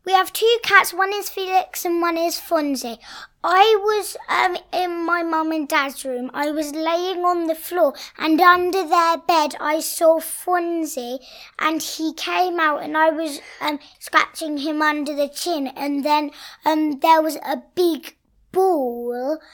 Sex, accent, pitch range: female, British, 285-350 Hz